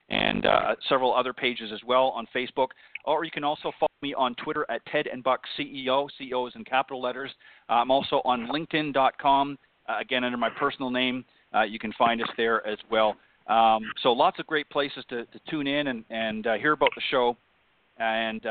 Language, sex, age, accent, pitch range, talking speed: English, male, 40-59, American, 120-140 Hz, 195 wpm